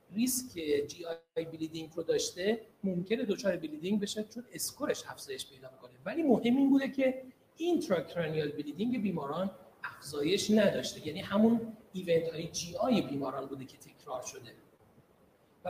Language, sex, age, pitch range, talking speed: Persian, male, 40-59, 170-255 Hz, 140 wpm